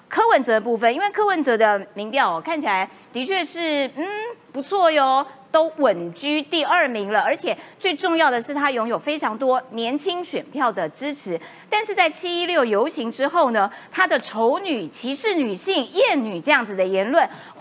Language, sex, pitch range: Chinese, female, 220-320 Hz